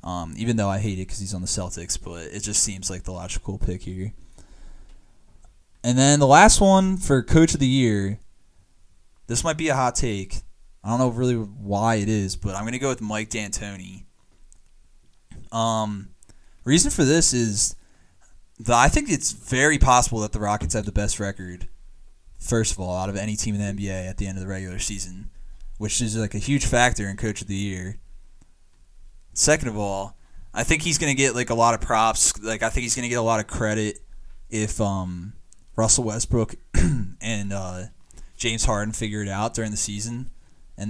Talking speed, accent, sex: 200 wpm, American, male